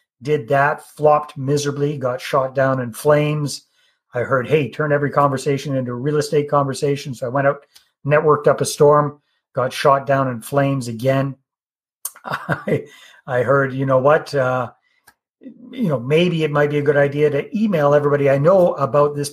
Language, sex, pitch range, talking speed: English, male, 130-150 Hz, 175 wpm